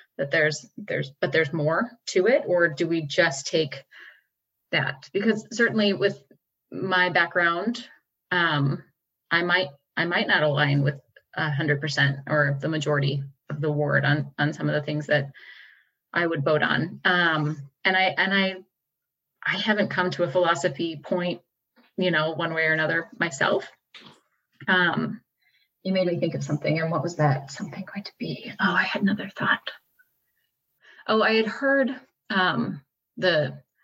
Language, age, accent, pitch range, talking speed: English, 30-49, American, 150-185 Hz, 165 wpm